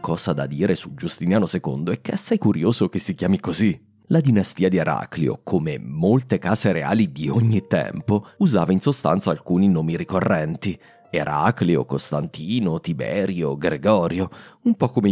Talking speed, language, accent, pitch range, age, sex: 155 wpm, Italian, native, 95-145 Hz, 30-49, male